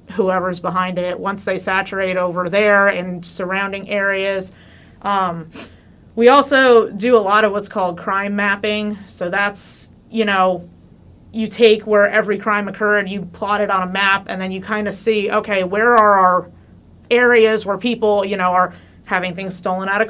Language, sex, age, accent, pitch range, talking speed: English, female, 30-49, American, 185-220 Hz, 175 wpm